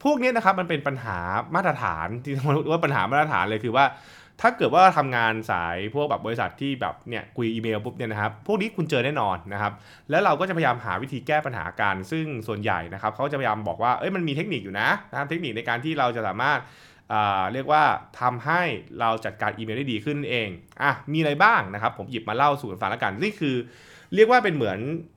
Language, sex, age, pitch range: Thai, male, 20-39, 105-150 Hz